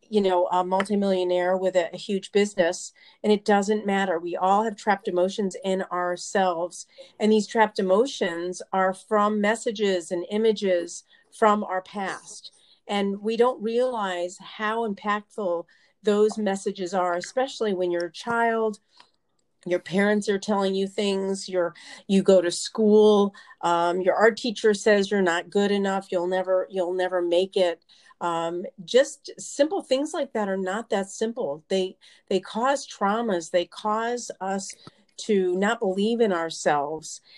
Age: 40-59